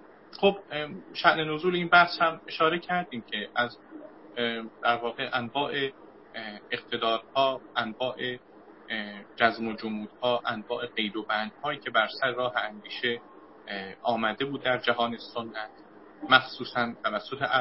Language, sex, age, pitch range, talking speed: Persian, male, 30-49, 110-145 Hz, 110 wpm